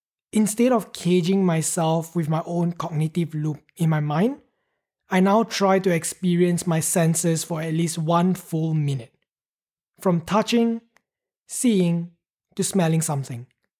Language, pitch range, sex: English, 165-195 Hz, male